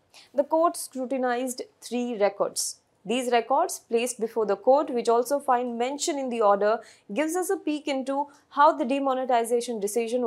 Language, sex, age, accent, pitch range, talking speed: English, female, 20-39, Indian, 220-285 Hz, 160 wpm